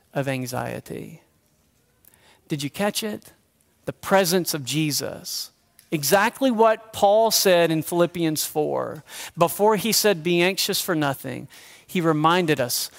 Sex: male